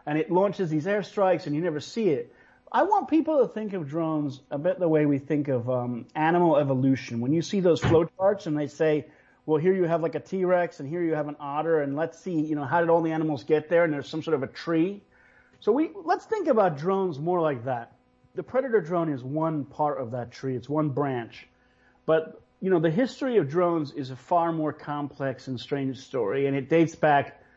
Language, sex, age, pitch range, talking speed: English, male, 40-59, 145-185 Hz, 235 wpm